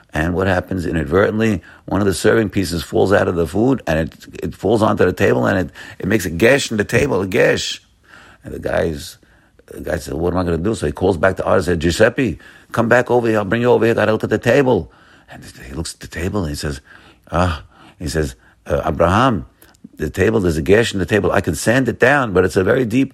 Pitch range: 80-110 Hz